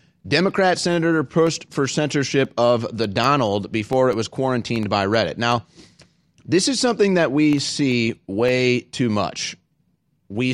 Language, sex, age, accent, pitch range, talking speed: English, male, 30-49, American, 115-150 Hz, 140 wpm